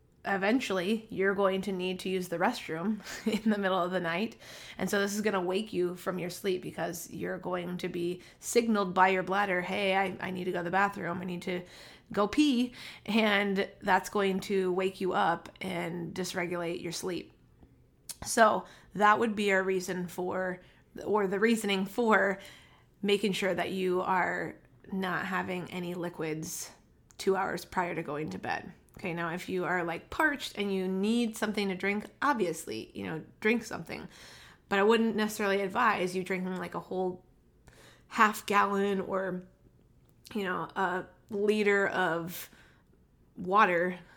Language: English